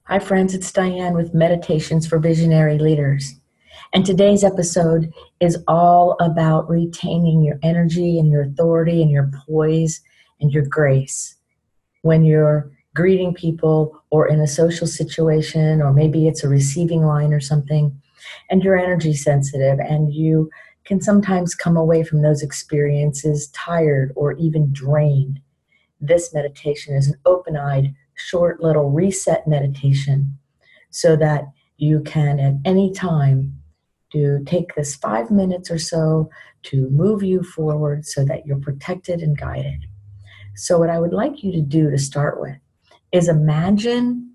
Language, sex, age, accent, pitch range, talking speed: English, female, 40-59, American, 145-170 Hz, 145 wpm